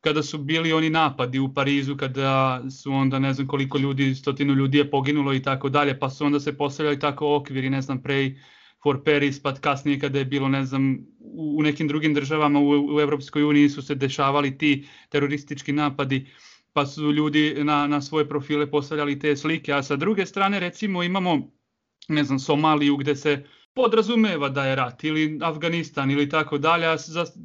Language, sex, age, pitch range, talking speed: Croatian, male, 30-49, 140-165 Hz, 185 wpm